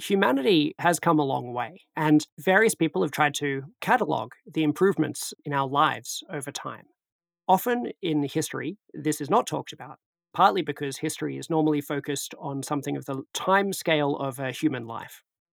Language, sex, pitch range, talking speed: English, male, 140-170 Hz, 165 wpm